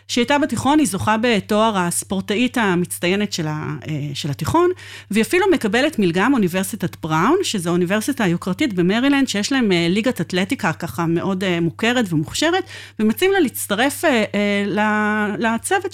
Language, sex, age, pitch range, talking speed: Hebrew, female, 30-49, 175-245 Hz, 135 wpm